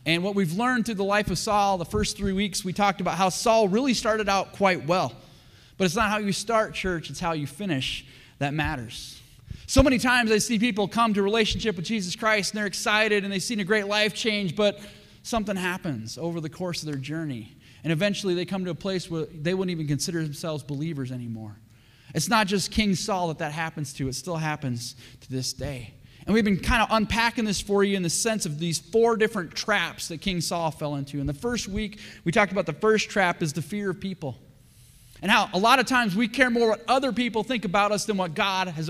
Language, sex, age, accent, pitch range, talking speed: English, male, 20-39, American, 145-210 Hz, 240 wpm